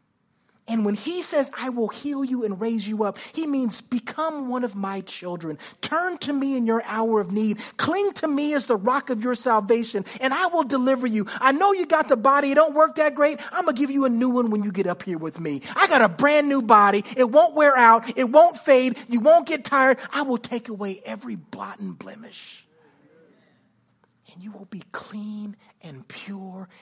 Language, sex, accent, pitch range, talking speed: English, male, American, 195-265 Hz, 220 wpm